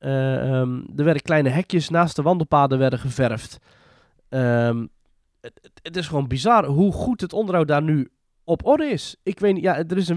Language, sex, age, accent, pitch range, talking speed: Dutch, male, 20-39, Dutch, 130-175 Hz, 185 wpm